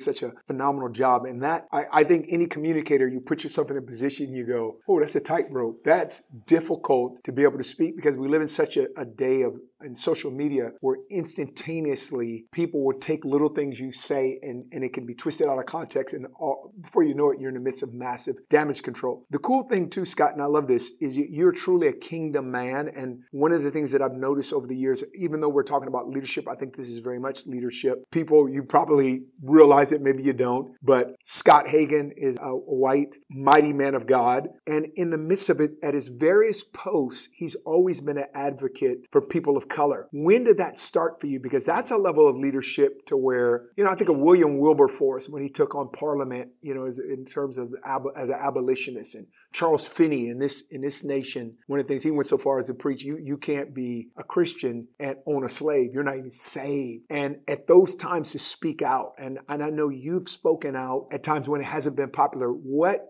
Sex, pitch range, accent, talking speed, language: male, 135-165 Hz, American, 230 wpm, English